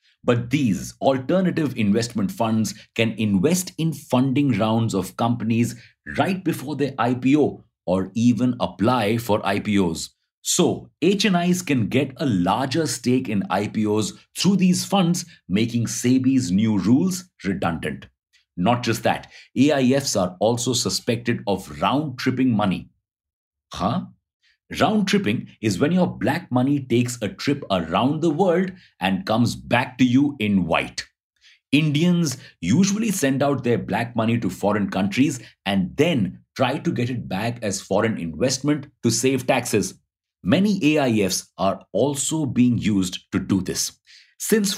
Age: 50-69